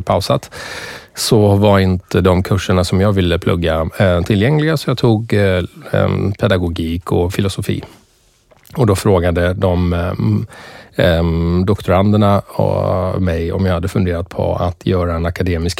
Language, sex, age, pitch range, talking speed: English, male, 30-49, 90-110 Hz, 125 wpm